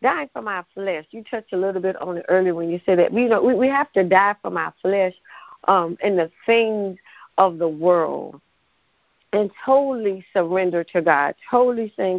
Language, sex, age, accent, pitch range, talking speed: English, female, 50-69, American, 185-235 Hz, 200 wpm